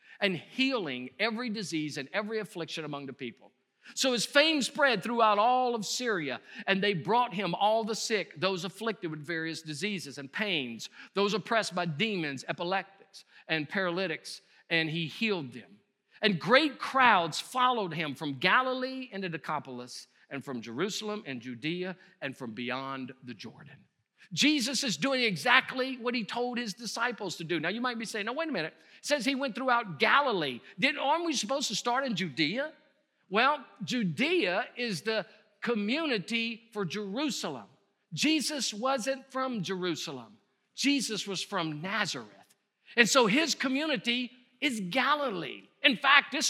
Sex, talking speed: male, 155 wpm